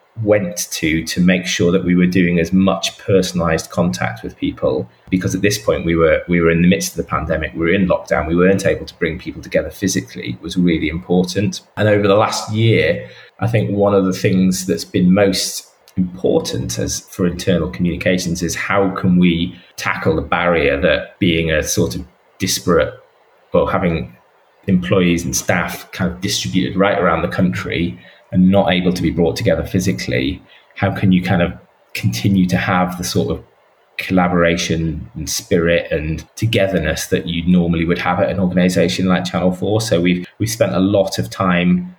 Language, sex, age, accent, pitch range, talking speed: English, male, 20-39, British, 85-95 Hz, 190 wpm